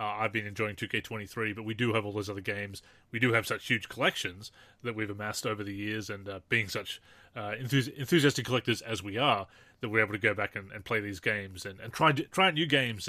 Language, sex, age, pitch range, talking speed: English, male, 30-49, 110-135 Hz, 250 wpm